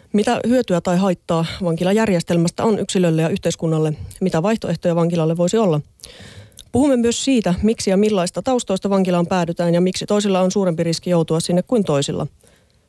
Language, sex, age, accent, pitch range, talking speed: Finnish, female, 30-49, native, 160-195 Hz, 155 wpm